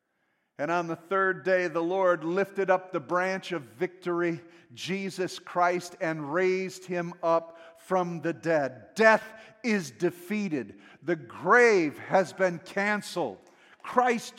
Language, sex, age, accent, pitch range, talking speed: English, male, 50-69, American, 195-290 Hz, 130 wpm